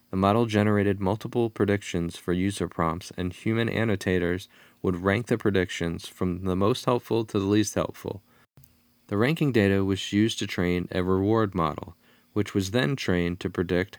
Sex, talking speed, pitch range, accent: male, 165 wpm, 90-110 Hz, American